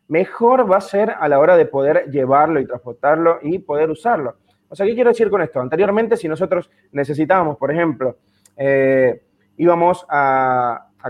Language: Spanish